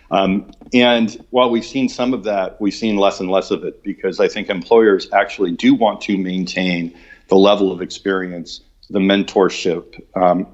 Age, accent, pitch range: 50-69, American, 90-105 Hz